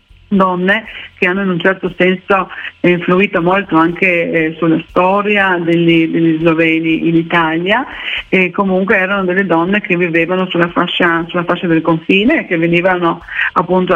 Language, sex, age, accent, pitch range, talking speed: Italian, female, 40-59, native, 170-190 Hz, 150 wpm